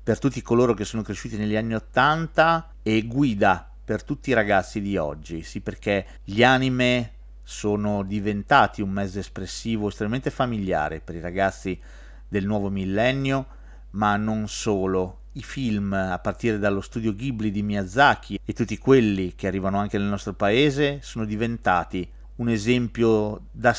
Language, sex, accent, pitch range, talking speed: Italian, male, native, 95-120 Hz, 150 wpm